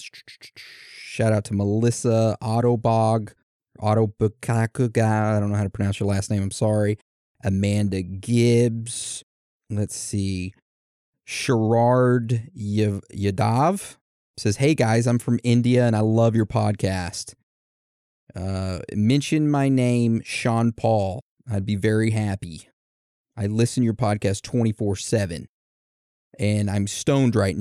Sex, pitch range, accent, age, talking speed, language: male, 105-125 Hz, American, 30-49, 120 wpm, English